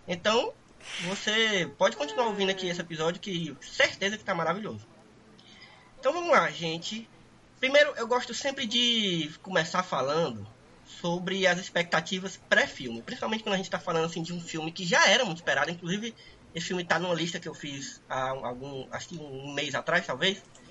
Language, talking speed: Portuguese, 170 wpm